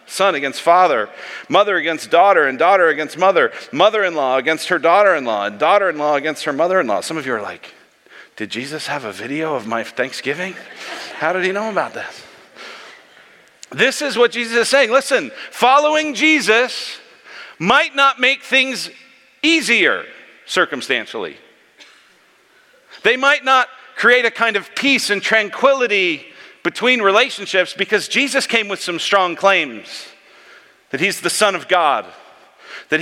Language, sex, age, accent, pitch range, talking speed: English, male, 50-69, American, 170-255 Hz, 145 wpm